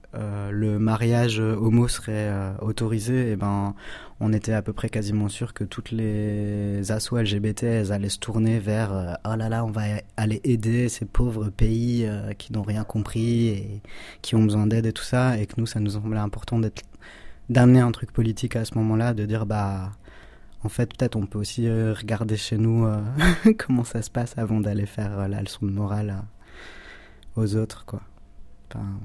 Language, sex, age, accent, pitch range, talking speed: French, male, 20-39, French, 100-115 Hz, 195 wpm